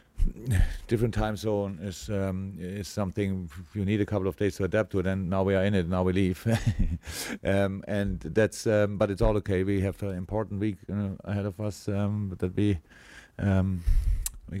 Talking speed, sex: 195 wpm, male